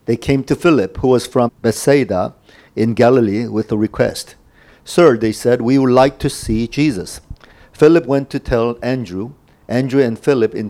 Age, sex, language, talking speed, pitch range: 50-69, male, English, 175 wpm, 110-145 Hz